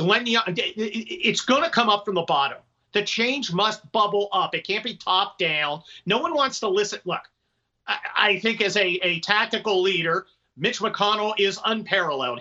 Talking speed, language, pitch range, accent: 170 wpm, English, 190-235 Hz, American